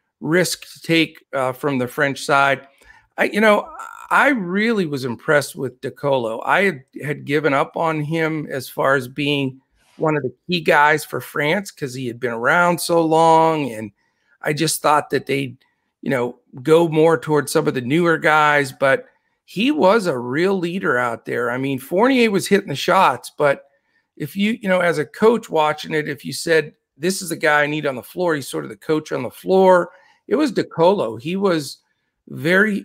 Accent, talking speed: American, 200 wpm